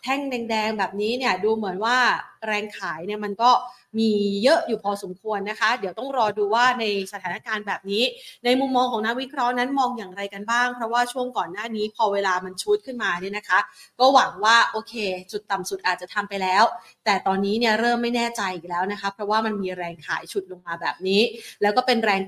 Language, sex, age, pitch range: Thai, female, 20-39, 205-255 Hz